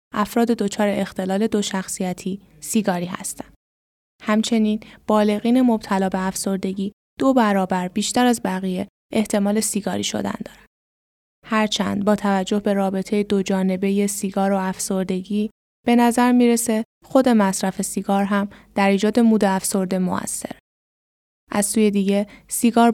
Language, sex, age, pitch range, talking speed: Persian, female, 10-29, 195-225 Hz, 125 wpm